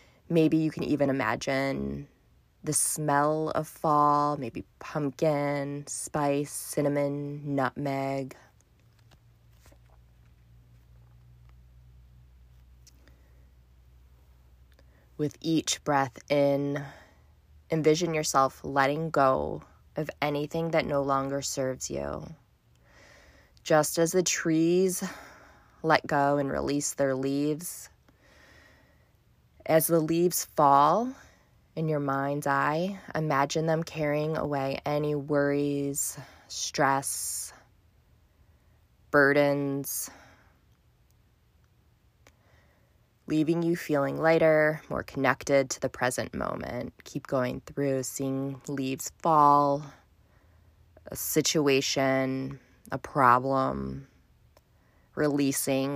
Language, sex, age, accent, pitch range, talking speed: English, female, 20-39, American, 110-150 Hz, 80 wpm